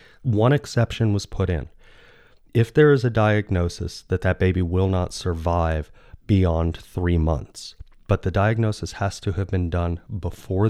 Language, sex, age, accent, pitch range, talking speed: English, male, 30-49, American, 85-100 Hz, 155 wpm